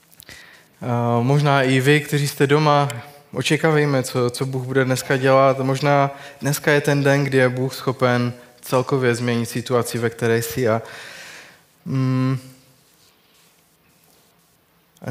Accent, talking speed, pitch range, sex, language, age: native, 125 wpm, 120-140 Hz, male, Czech, 20-39